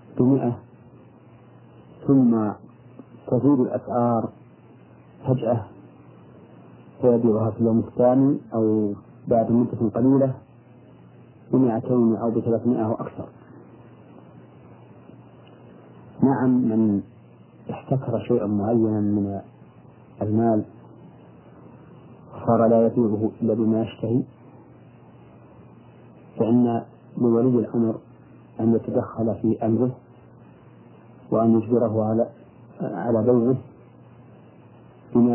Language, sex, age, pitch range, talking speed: Arabic, male, 50-69, 110-120 Hz, 70 wpm